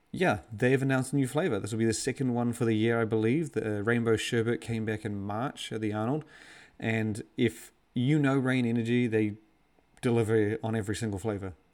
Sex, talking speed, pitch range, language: male, 205 wpm, 110-120 Hz, English